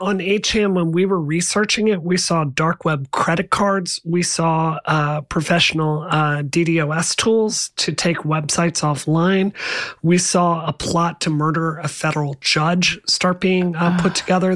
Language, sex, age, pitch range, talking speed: English, male, 30-49, 155-180 Hz, 155 wpm